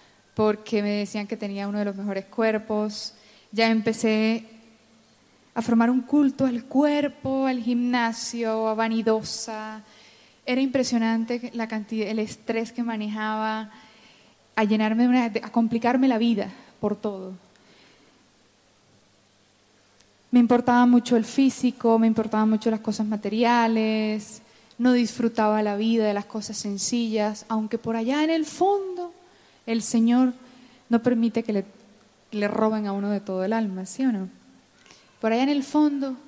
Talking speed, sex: 145 wpm, female